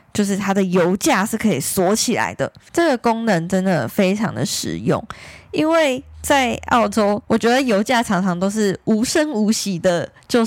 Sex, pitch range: female, 175-225 Hz